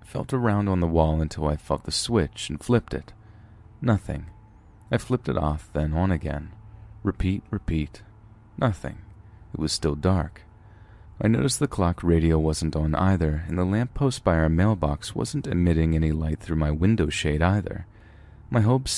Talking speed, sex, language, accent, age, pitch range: 170 wpm, male, English, American, 30-49, 80-110 Hz